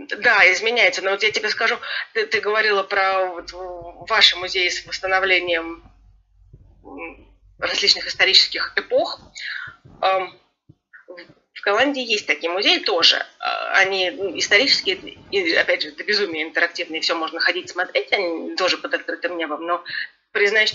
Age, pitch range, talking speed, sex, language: 30-49, 180-260 Hz, 120 wpm, female, Russian